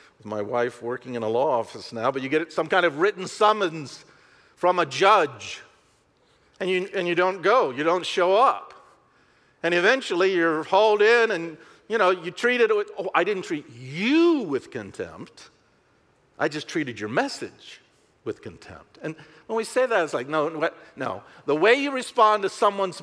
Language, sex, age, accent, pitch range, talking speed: English, male, 50-69, American, 145-225 Hz, 185 wpm